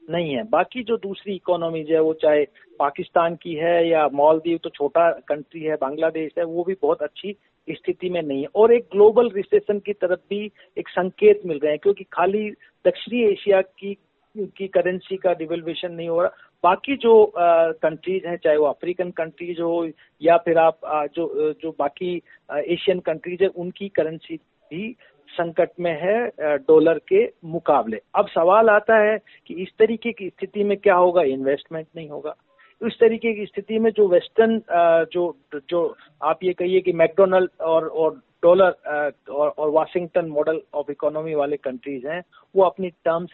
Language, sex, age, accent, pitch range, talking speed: Hindi, male, 50-69, native, 155-195 Hz, 175 wpm